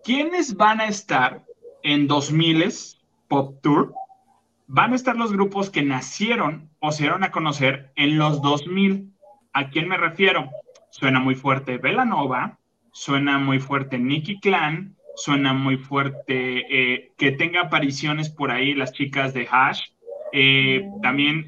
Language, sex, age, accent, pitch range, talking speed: Spanish, male, 20-39, Mexican, 140-190 Hz, 140 wpm